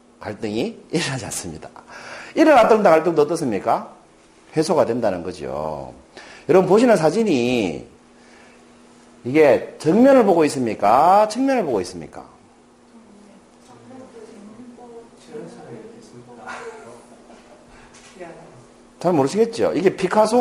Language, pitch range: Korean, 165-260 Hz